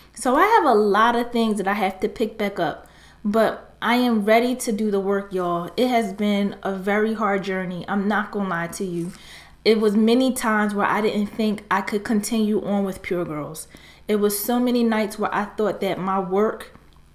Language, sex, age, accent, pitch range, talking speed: English, female, 20-39, American, 205-235 Hz, 220 wpm